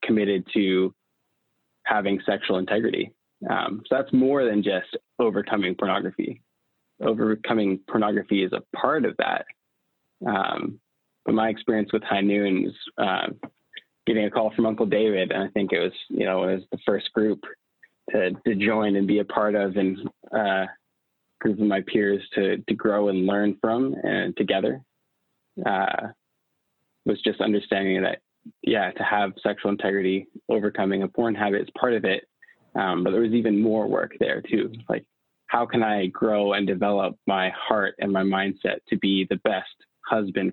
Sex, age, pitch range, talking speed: male, 20-39, 95-110 Hz, 165 wpm